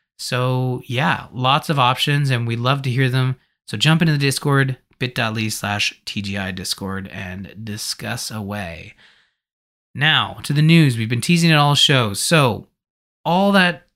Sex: male